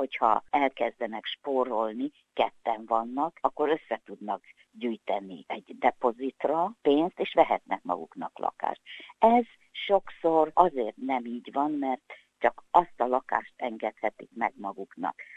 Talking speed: 115 wpm